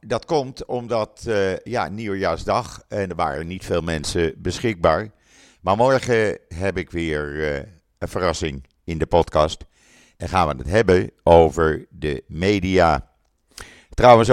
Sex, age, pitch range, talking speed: male, 50-69, 80-105 Hz, 140 wpm